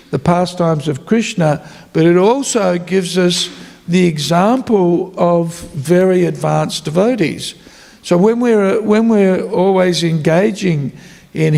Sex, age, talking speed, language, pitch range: male, 60-79, 120 wpm, English, 160-195 Hz